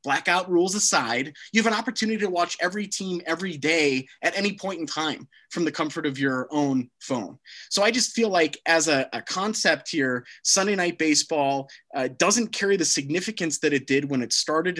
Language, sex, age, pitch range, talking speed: English, male, 30-49, 145-205 Hz, 200 wpm